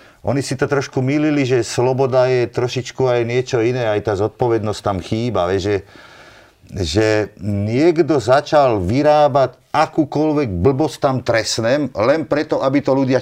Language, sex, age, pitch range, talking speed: Slovak, male, 40-59, 105-135 Hz, 140 wpm